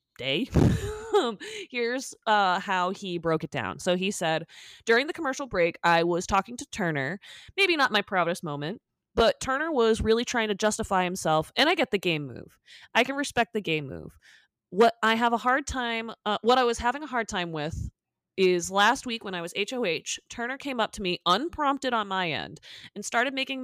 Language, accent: English, American